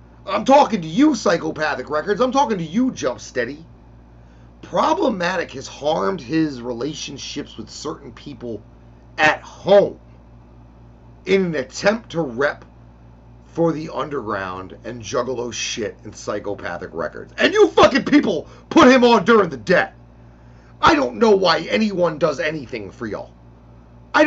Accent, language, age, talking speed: American, English, 30-49, 140 wpm